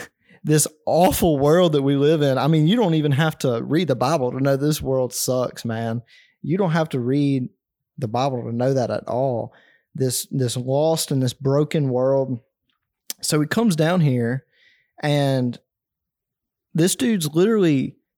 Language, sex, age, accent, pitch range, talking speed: English, male, 20-39, American, 125-155 Hz, 170 wpm